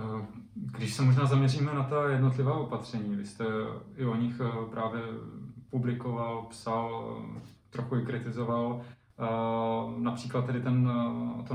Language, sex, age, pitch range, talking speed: Czech, male, 20-39, 110-125 Hz, 110 wpm